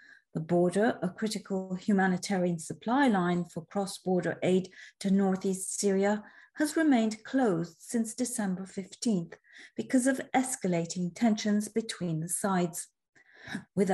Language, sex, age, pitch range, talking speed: English, female, 40-59, 175-240 Hz, 115 wpm